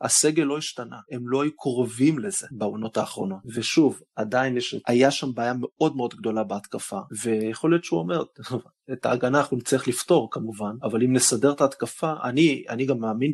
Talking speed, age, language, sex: 165 wpm, 30-49, Hebrew, male